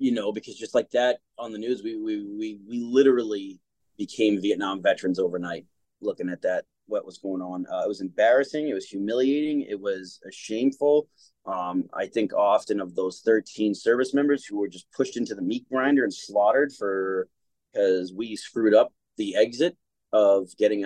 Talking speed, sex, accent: 185 wpm, male, American